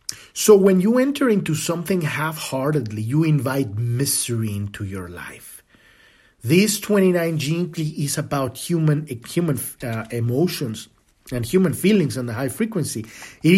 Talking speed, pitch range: 135 wpm, 135-190 Hz